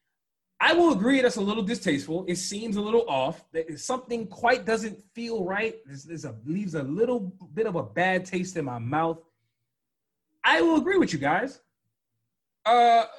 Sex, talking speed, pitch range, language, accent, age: male, 165 wpm, 145-205 Hz, English, American, 30-49